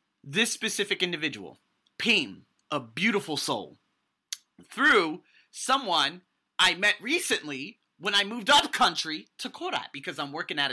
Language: English